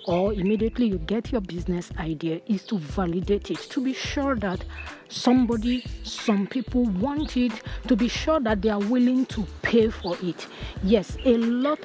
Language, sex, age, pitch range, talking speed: English, female, 40-59, 215-270 Hz, 170 wpm